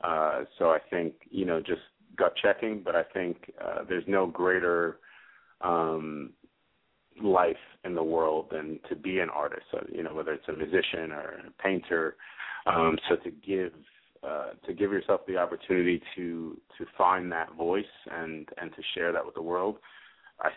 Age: 30-49